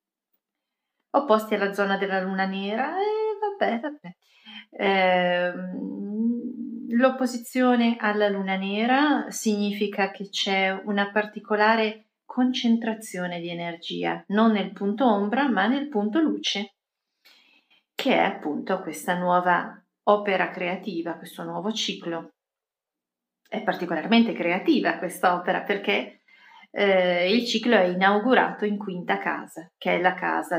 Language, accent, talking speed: Italian, native, 110 wpm